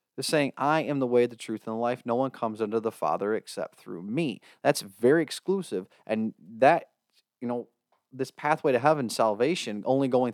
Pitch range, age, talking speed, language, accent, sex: 110-160 Hz, 30-49, 190 wpm, English, American, male